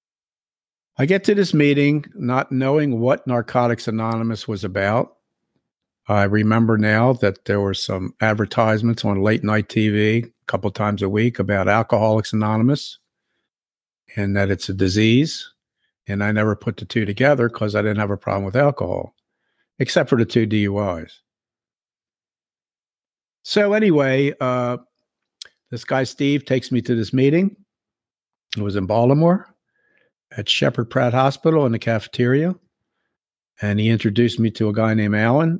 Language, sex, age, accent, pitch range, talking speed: English, male, 60-79, American, 105-125 Hz, 150 wpm